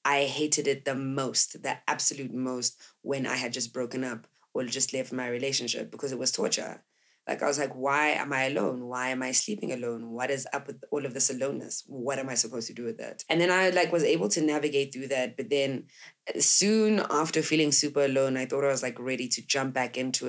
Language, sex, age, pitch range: English, female, 20-39, 130-160 Hz